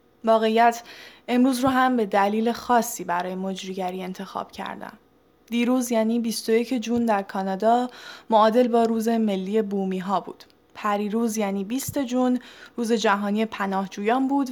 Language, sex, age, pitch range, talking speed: Persian, female, 10-29, 200-235 Hz, 130 wpm